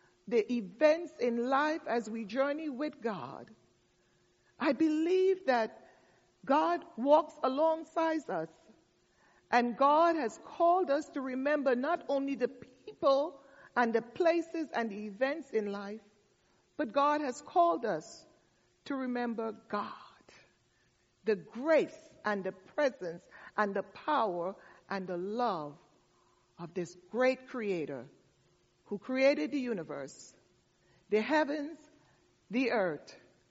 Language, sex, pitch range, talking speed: English, female, 210-295 Hz, 120 wpm